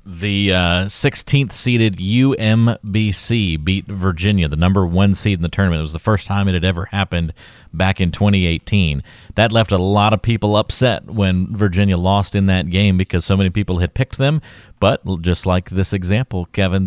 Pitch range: 90-110 Hz